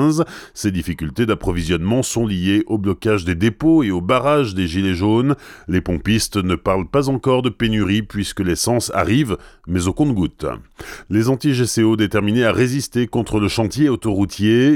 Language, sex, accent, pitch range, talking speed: French, male, French, 95-120 Hz, 160 wpm